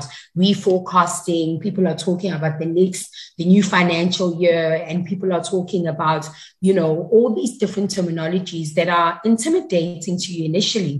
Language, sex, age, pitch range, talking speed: English, female, 30-49, 165-185 Hz, 155 wpm